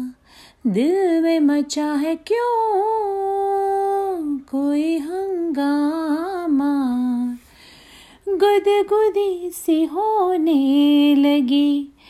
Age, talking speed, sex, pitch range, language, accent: 30-49, 55 wpm, female, 255-360 Hz, Hindi, native